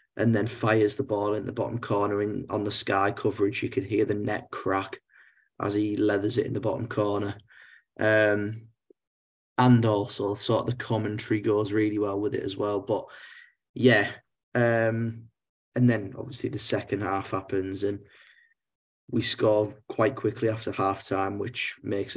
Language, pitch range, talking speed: English, 100-115 Hz, 170 wpm